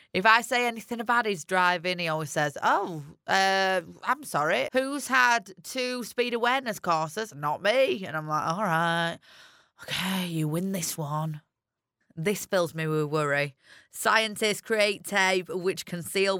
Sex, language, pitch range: female, English, 165-220 Hz